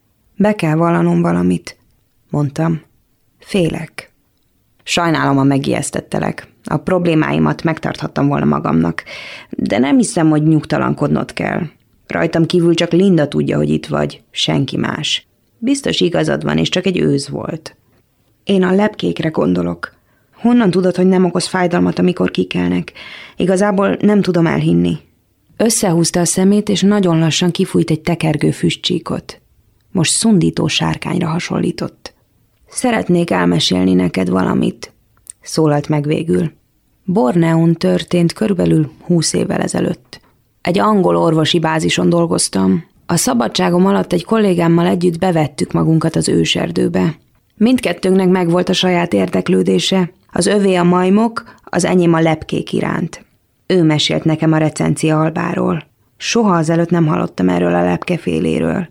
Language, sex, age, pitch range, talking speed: Hungarian, female, 20-39, 110-185 Hz, 125 wpm